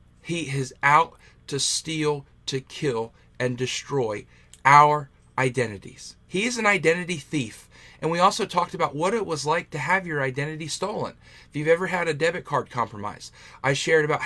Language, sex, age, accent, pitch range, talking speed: English, male, 40-59, American, 130-165 Hz, 175 wpm